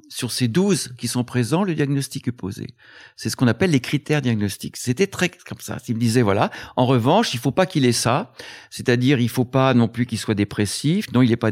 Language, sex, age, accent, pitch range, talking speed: French, male, 50-69, French, 115-160 Hz, 245 wpm